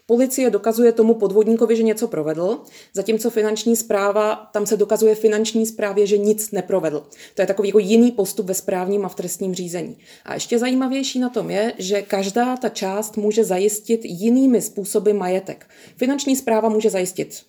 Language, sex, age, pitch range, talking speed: Czech, female, 30-49, 195-230 Hz, 170 wpm